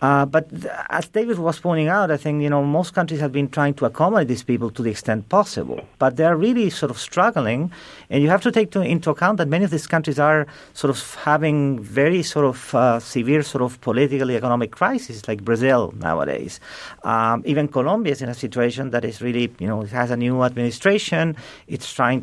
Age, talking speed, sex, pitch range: 40-59, 220 wpm, male, 125-170 Hz